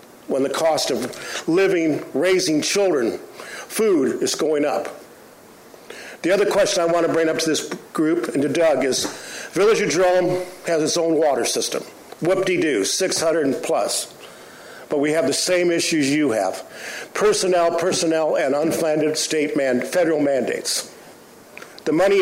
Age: 60-79